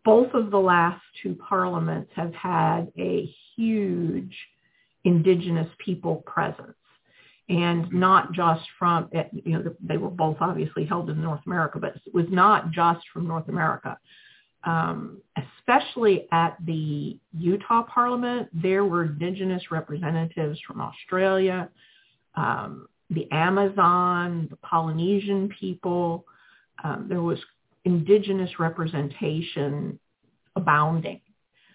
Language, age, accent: English, 50-69, American